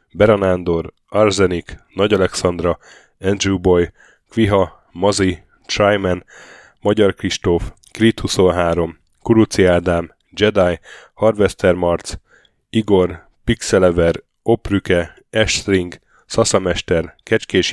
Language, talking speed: Hungarian, 80 wpm